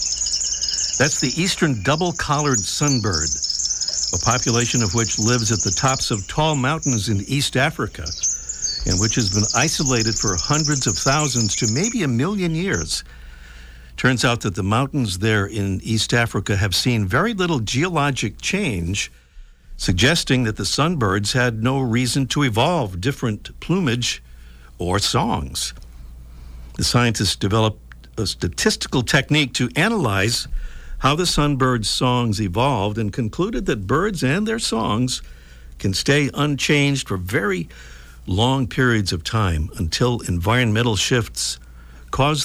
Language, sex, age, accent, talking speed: English, male, 60-79, American, 135 wpm